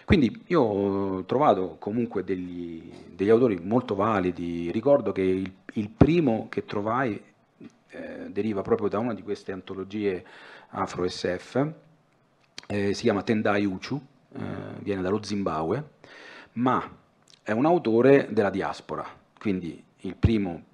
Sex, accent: male, native